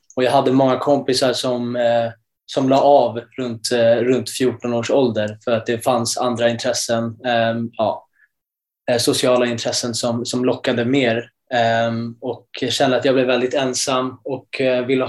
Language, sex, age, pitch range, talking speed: Swedish, male, 20-39, 120-135 Hz, 145 wpm